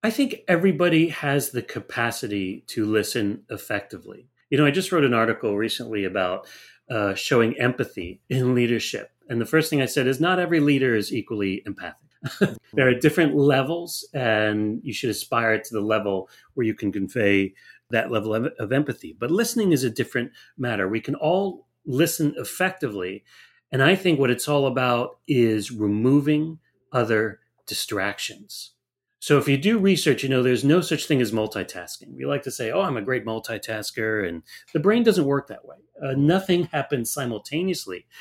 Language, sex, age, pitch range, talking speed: English, male, 40-59, 110-150 Hz, 175 wpm